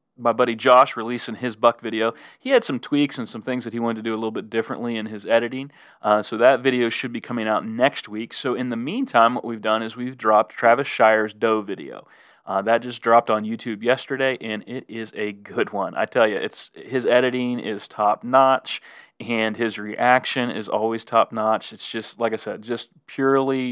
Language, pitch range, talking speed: English, 110-125 Hz, 215 wpm